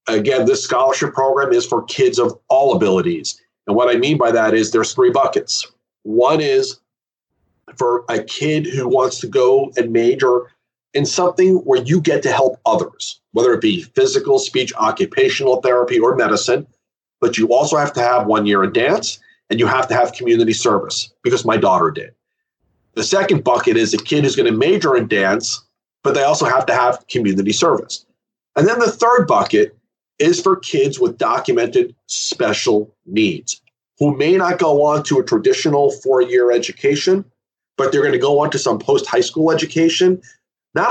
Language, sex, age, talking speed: English, male, 40-59, 185 wpm